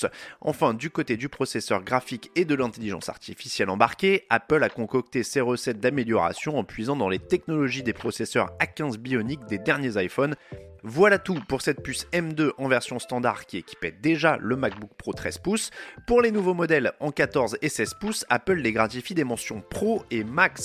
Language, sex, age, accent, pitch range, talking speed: French, male, 30-49, French, 115-170 Hz, 185 wpm